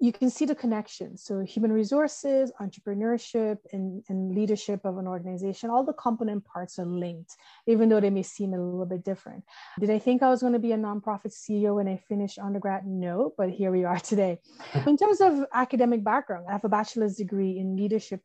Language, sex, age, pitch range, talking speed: English, female, 30-49, 190-230 Hz, 205 wpm